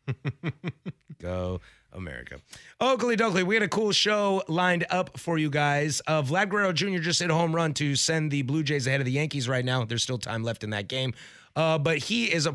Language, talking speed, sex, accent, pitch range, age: English, 215 wpm, male, American, 115-160 Hz, 30-49